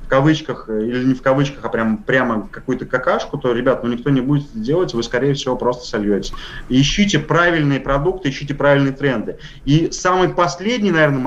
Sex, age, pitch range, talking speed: male, 30-49, 135-165 Hz, 175 wpm